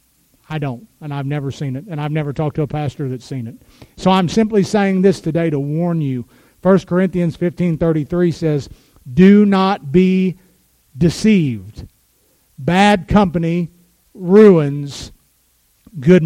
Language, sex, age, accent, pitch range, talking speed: English, male, 50-69, American, 165-230 Hz, 140 wpm